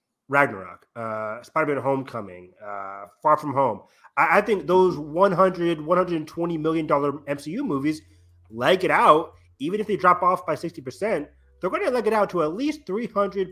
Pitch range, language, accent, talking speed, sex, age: 100-155 Hz, English, American, 175 wpm, male, 30-49